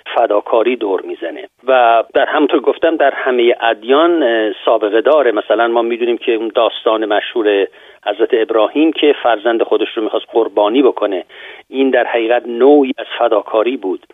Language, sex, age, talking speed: Persian, male, 40-59, 150 wpm